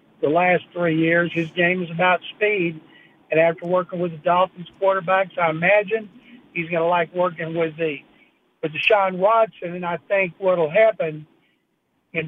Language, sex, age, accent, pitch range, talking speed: English, male, 60-79, American, 165-190 Hz, 170 wpm